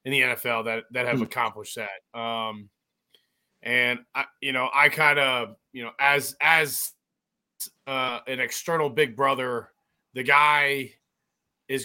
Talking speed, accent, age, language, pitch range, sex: 140 wpm, American, 30-49, English, 125-155 Hz, male